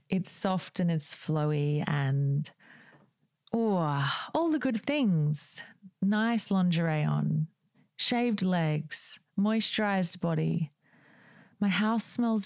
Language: English